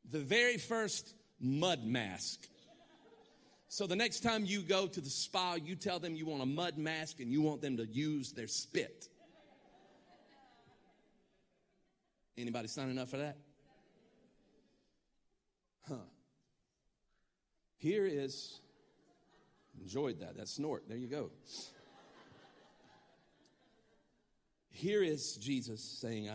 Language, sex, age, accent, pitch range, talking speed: English, male, 50-69, American, 115-160 Hz, 110 wpm